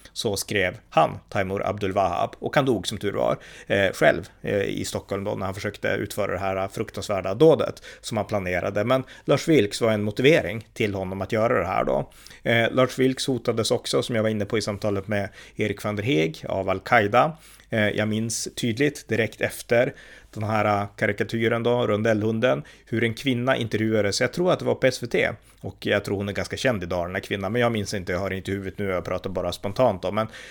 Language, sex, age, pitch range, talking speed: Swedish, male, 30-49, 95-115 Hz, 205 wpm